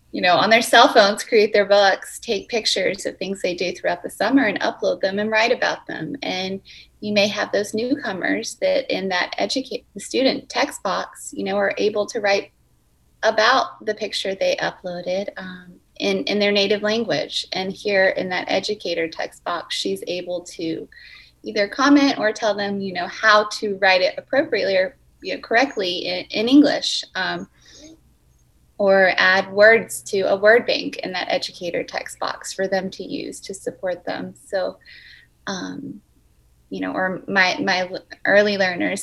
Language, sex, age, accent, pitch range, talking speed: English, female, 30-49, American, 180-220 Hz, 170 wpm